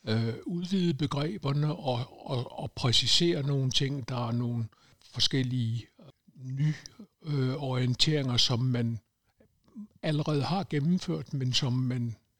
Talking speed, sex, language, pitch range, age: 95 wpm, male, Danish, 120-140 Hz, 60-79